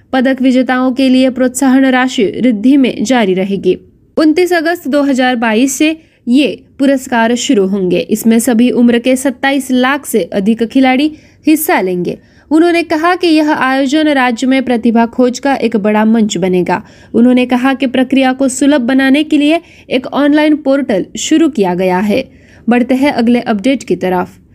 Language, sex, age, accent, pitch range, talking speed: Marathi, female, 20-39, native, 230-275 Hz, 160 wpm